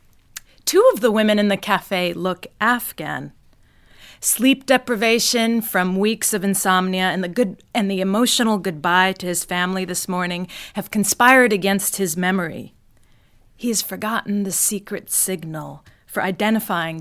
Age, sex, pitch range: 30-49, female, 175-215 Hz